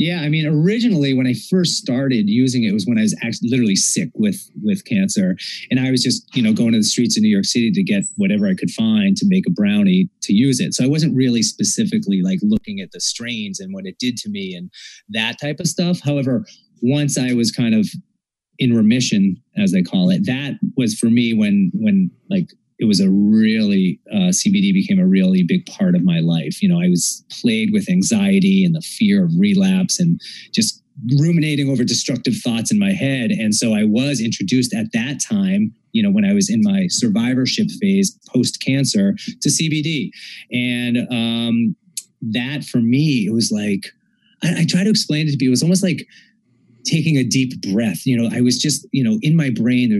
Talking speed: 210 wpm